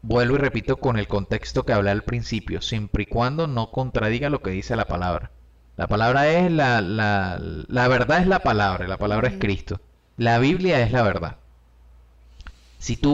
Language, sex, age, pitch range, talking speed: Spanish, male, 30-49, 100-135 Hz, 185 wpm